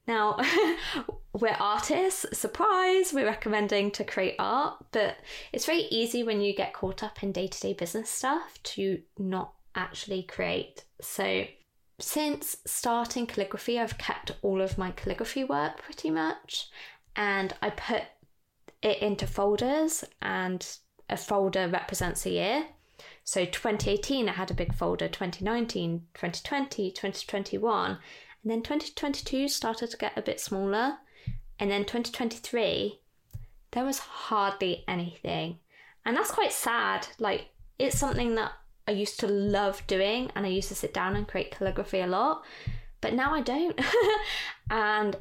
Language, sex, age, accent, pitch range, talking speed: English, female, 20-39, British, 190-260 Hz, 140 wpm